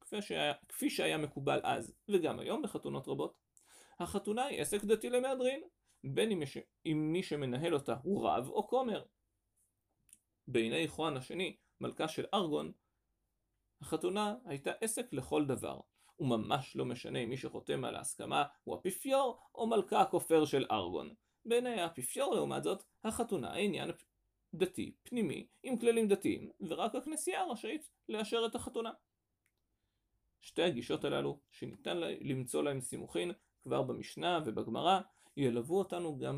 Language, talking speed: Hebrew, 130 wpm